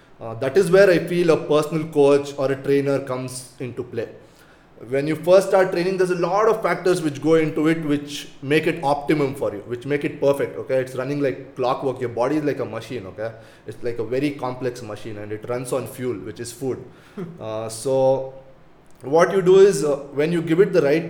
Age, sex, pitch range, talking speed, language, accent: 20-39, male, 130-155 Hz, 220 wpm, English, Indian